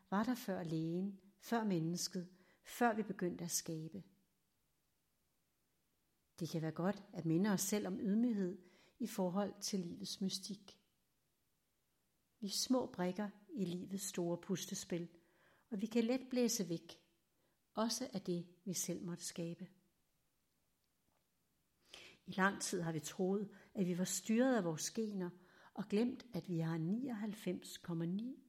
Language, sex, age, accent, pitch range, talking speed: Danish, female, 60-79, native, 175-210 Hz, 140 wpm